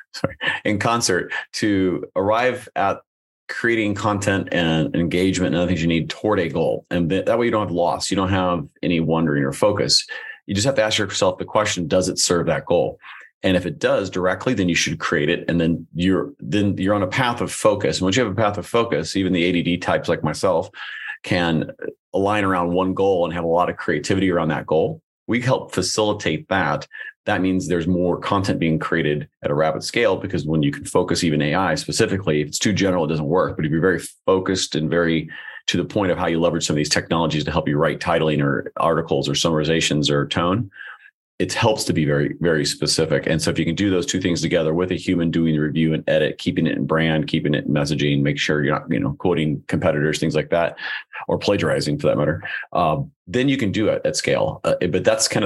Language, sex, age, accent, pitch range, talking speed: English, male, 30-49, American, 80-95 Hz, 230 wpm